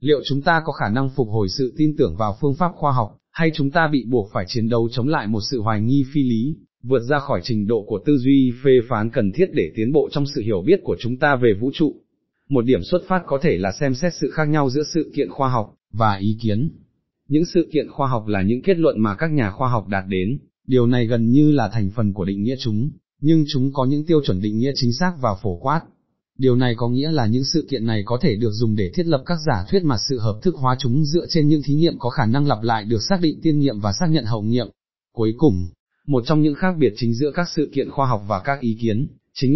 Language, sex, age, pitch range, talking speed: Vietnamese, male, 20-39, 115-150 Hz, 275 wpm